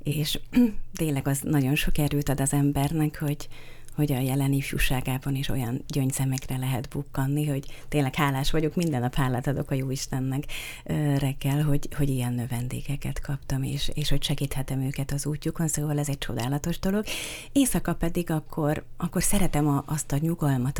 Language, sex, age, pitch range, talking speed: Hungarian, female, 30-49, 135-150 Hz, 160 wpm